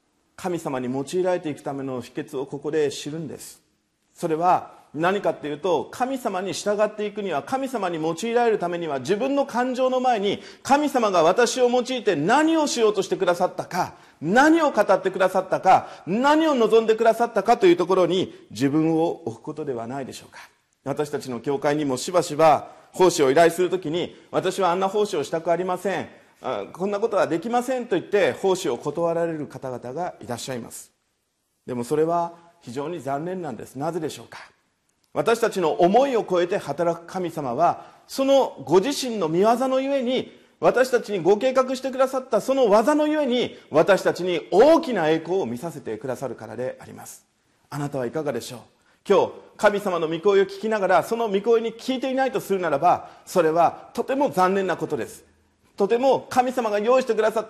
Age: 40-59